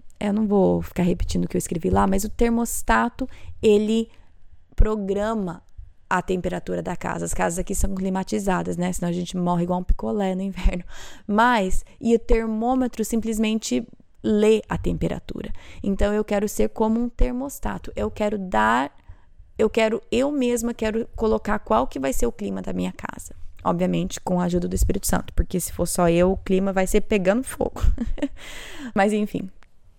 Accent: Brazilian